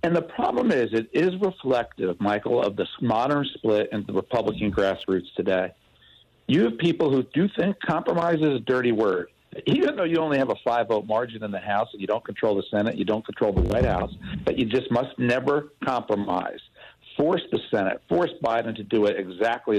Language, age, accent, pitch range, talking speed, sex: English, 60-79, American, 100-150 Hz, 200 wpm, male